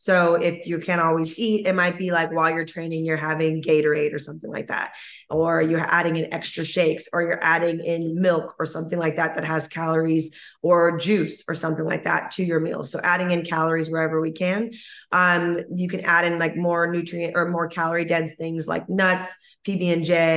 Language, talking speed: English, 205 wpm